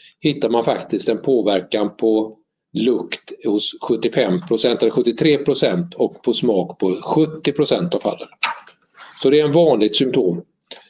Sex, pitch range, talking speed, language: male, 105-150 Hz, 145 wpm, Swedish